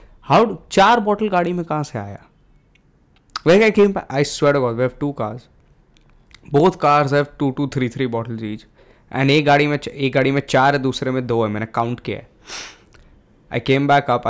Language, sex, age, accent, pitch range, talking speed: English, male, 20-39, Indian, 110-140 Hz, 145 wpm